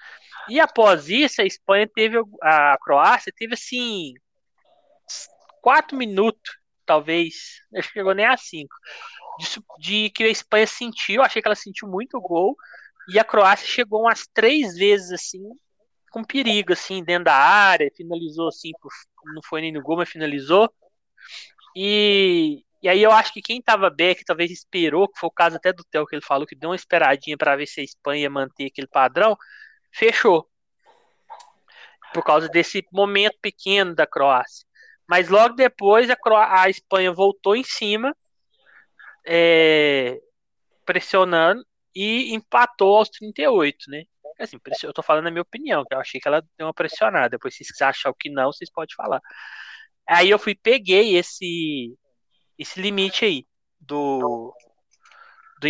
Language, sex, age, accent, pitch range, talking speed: Portuguese, male, 20-39, Brazilian, 165-225 Hz, 160 wpm